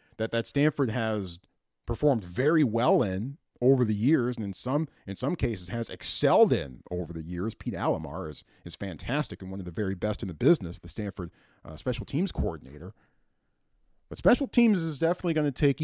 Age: 40-59